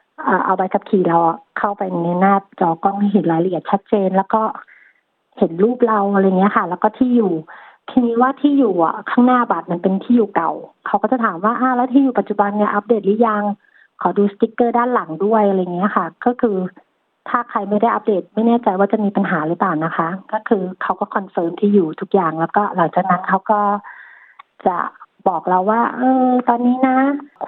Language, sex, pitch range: Thai, female, 190-230 Hz